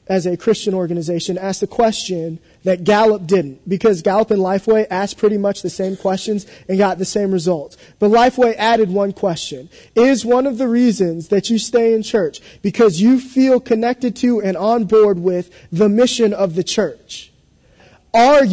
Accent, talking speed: American, 180 wpm